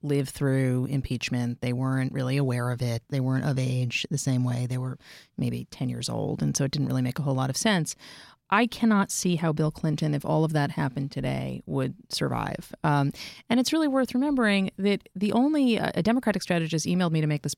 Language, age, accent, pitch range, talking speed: English, 30-49, American, 135-180 Hz, 220 wpm